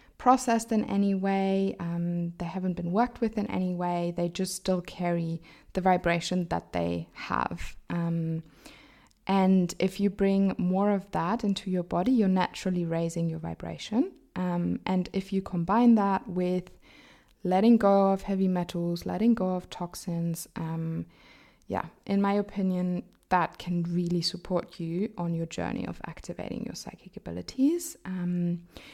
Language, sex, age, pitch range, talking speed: English, female, 20-39, 170-200 Hz, 150 wpm